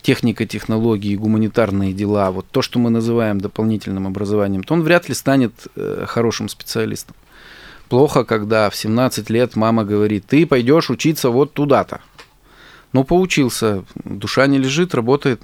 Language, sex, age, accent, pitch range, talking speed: Russian, male, 20-39, native, 100-125 Hz, 140 wpm